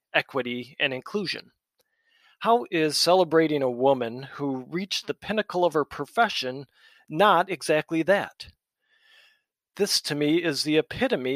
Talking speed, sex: 125 wpm, male